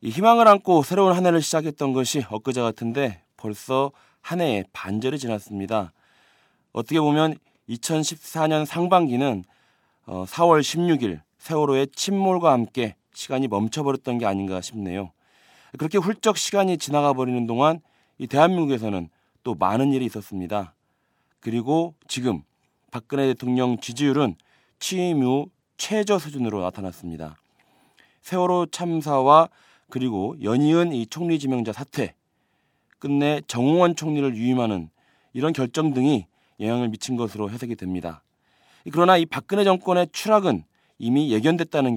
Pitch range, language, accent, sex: 115-165 Hz, Korean, native, male